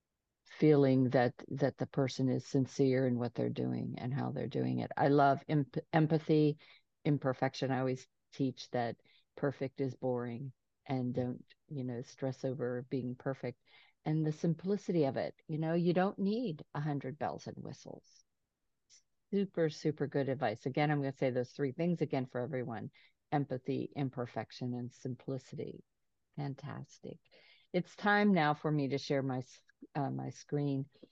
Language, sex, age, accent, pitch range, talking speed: English, female, 50-69, American, 130-155 Hz, 155 wpm